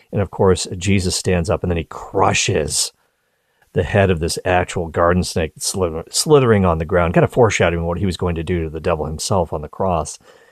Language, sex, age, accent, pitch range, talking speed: English, male, 40-59, American, 90-135 Hz, 210 wpm